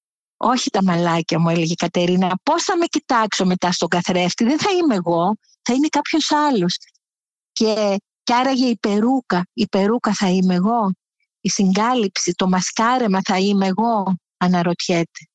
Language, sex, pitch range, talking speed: Greek, female, 190-260 Hz, 155 wpm